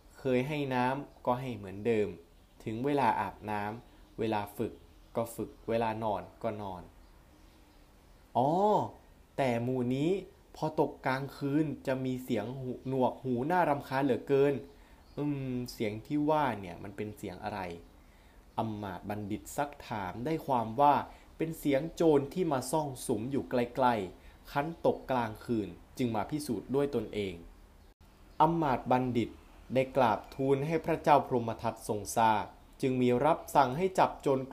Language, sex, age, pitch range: Thai, male, 20-39, 105-135 Hz